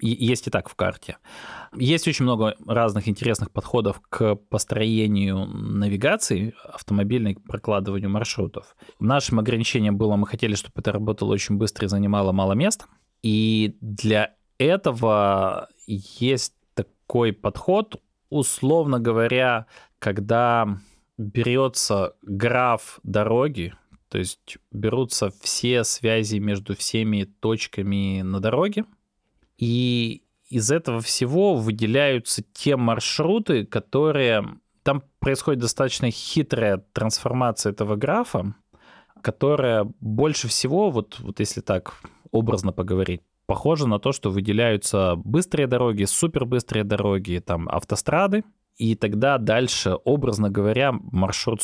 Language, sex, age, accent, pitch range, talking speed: Russian, male, 20-39, native, 100-125 Hz, 110 wpm